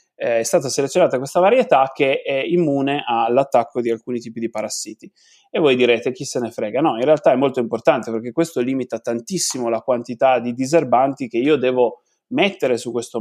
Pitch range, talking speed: 120-150 Hz, 190 wpm